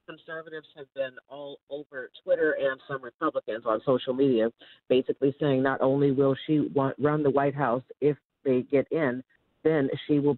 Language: English